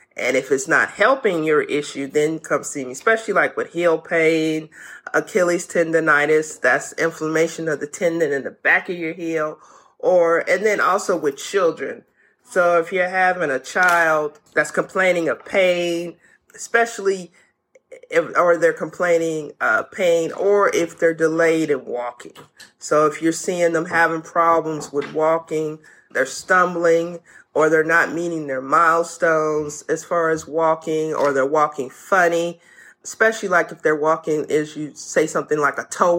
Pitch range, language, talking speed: 155-180 Hz, English, 160 wpm